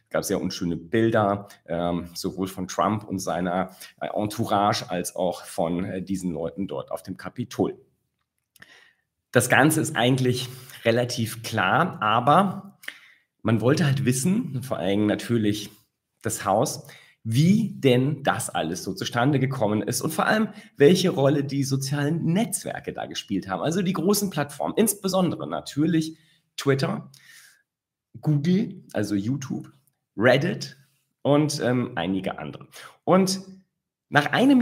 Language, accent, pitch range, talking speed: German, German, 105-150 Hz, 125 wpm